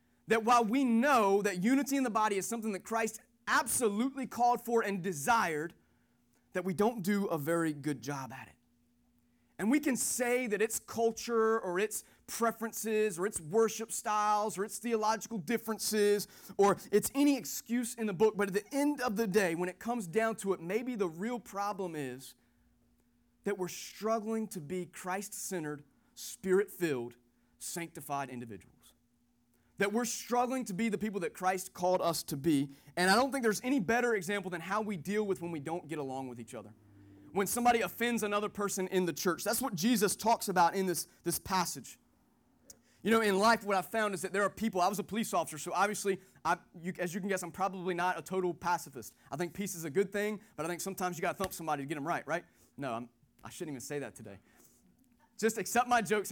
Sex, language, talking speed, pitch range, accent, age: male, English, 210 wpm, 165-225 Hz, American, 30-49